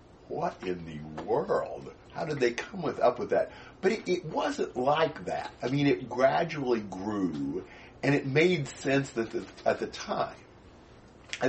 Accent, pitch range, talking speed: American, 80-135 Hz, 160 wpm